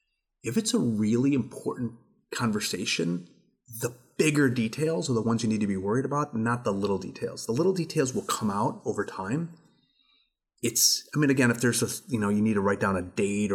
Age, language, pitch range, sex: 30-49, English, 100-130 Hz, male